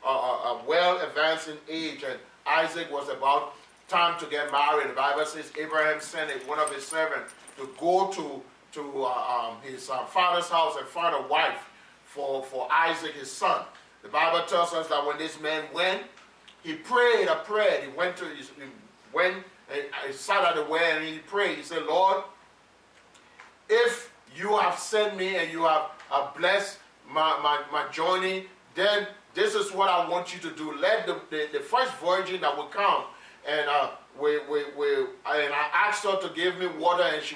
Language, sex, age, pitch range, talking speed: English, male, 40-59, 150-190 Hz, 190 wpm